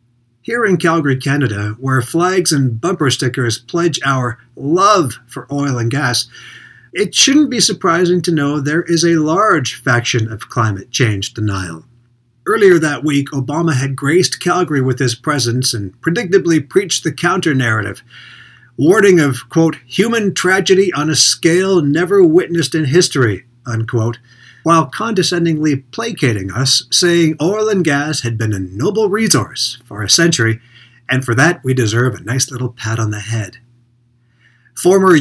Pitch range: 120-175 Hz